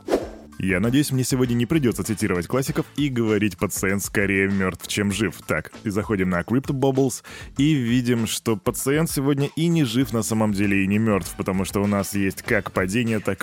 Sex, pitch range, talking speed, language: male, 100-125 Hz, 195 wpm, Russian